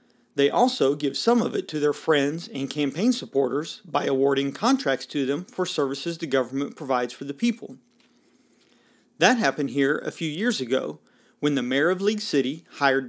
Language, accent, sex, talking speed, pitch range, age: English, American, male, 180 wpm, 135-200 Hz, 40-59